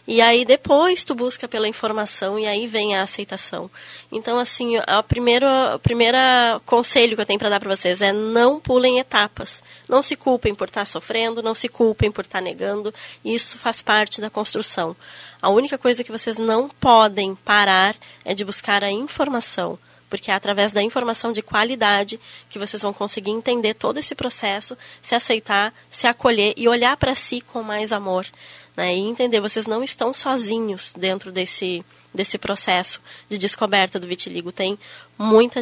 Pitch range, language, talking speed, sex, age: 200-235 Hz, Portuguese, 170 wpm, female, 10-29